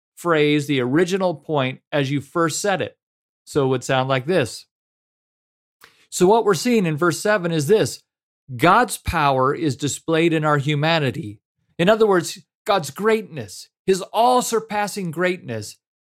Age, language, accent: 40-59, English, American